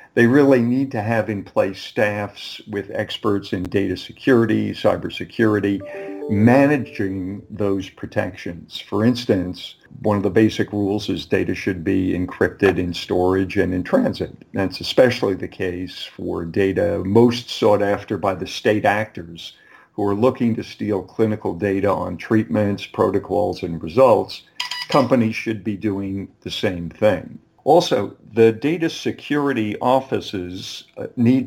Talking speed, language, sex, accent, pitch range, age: 135 wpm, English, male, American, 95-115 Hz, 50-69